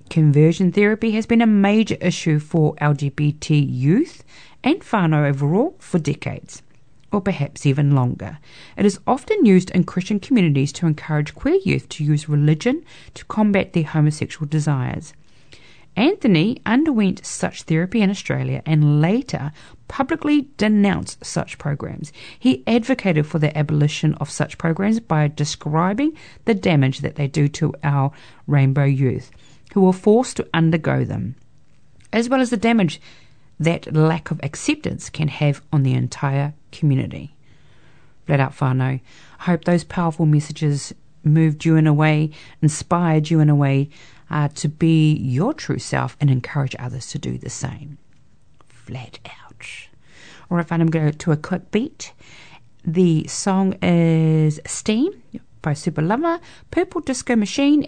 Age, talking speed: 40-59, 150 wpm